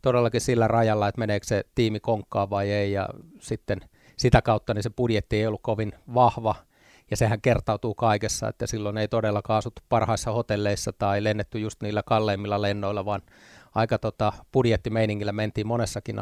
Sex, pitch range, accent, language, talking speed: male, 105-115 Hz, native, Finnish, 165 wpm